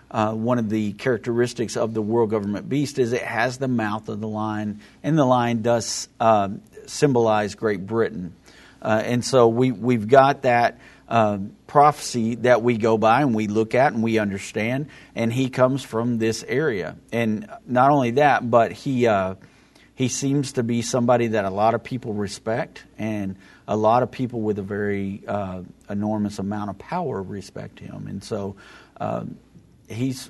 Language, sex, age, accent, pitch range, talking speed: English, male, 50-69, American, 105-125 Hz, 180 wpm